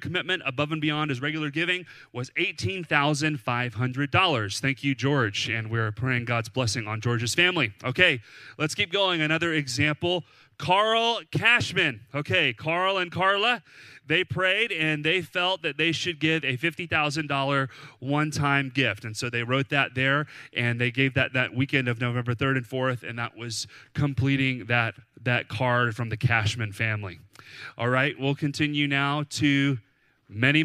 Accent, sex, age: American, male, 30-49